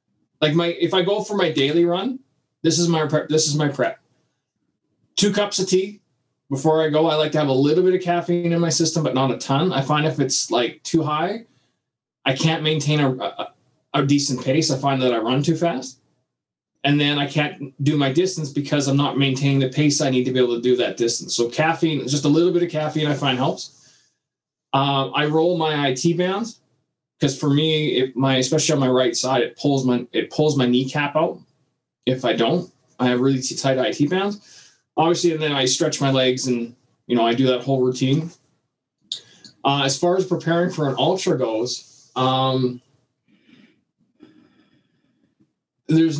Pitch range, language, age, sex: 130-160 Hz, English, 20-39, male